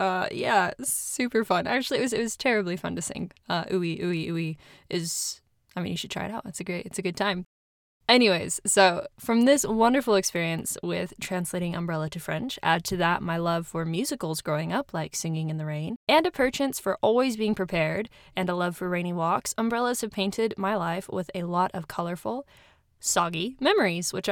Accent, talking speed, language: American, 200 wpm, English